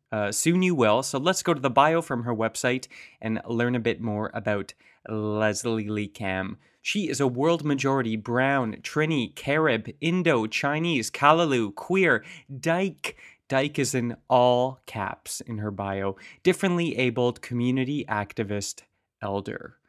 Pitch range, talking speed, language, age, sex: 115-165 Hz, 140 wpm, English, 20-39, male